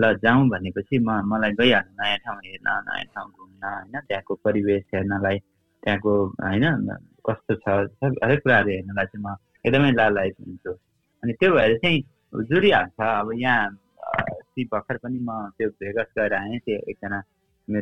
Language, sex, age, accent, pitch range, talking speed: English, male, 20-39, Indian, 95-120 Hz, 55 wpm